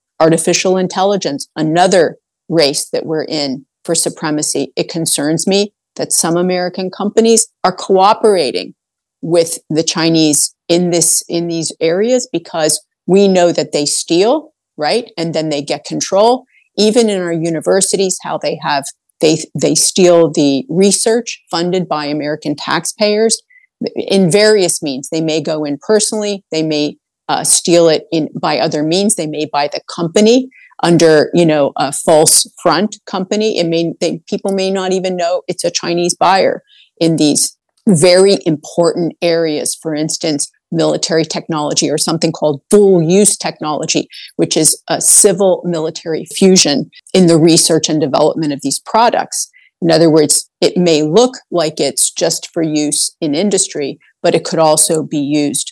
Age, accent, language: 50-69, American, English